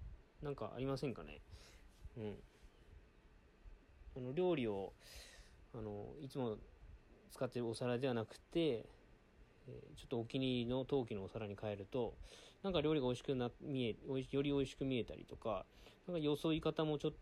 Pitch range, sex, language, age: 105-150 Hz, male, Japanese, 20-39